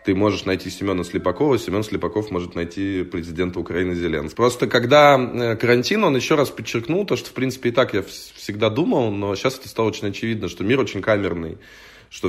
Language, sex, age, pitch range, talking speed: Russian, male, 20-39, 95-115 Hz, 190 wpm